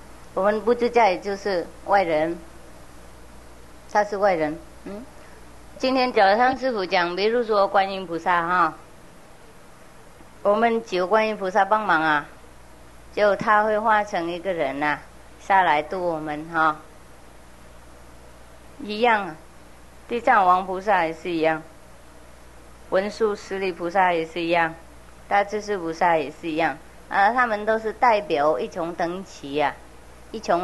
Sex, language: female, English